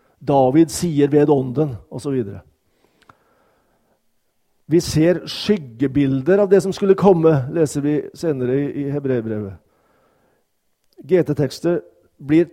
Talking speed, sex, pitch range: 110 wpm, male, 135-170 Hz